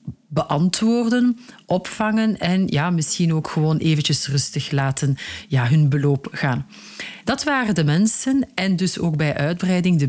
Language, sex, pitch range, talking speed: Dutch, female, 150-185 Hz, 130 wpm